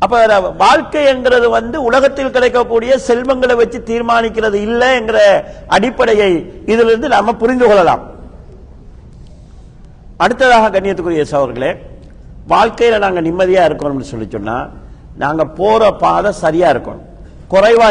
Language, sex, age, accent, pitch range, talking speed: Tamil, male, 50-69, native, 175-225 Hz, 50 wpm